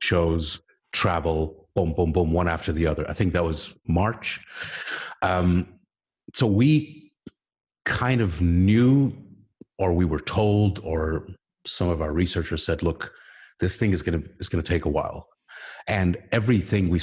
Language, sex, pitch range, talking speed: English, male, 85-110 Hz, 150 wpm